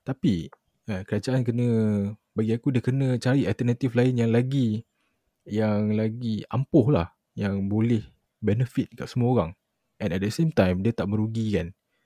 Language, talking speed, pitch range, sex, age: Malay, 145 wpm, 100-120 Hz, male, 20-39